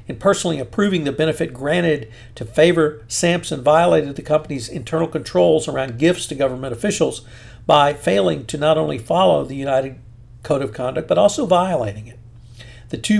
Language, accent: English, American